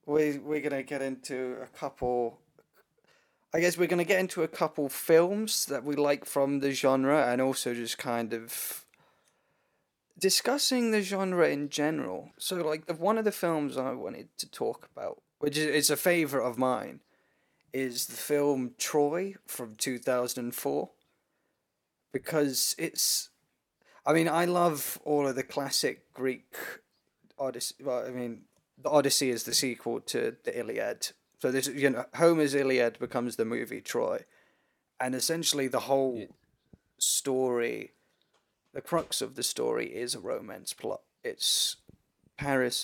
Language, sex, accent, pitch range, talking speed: English, male, British, 125-160 Hz, 150 wpm